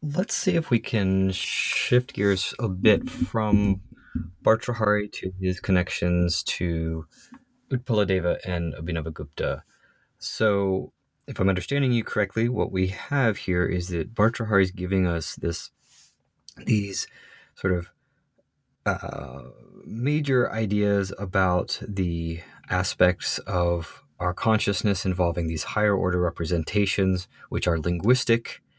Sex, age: male, 30-49